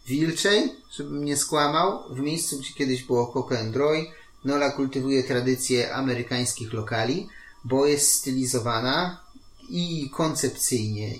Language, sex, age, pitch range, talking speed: Polish, male, 30-49, 115-135 Hz, 120 wpm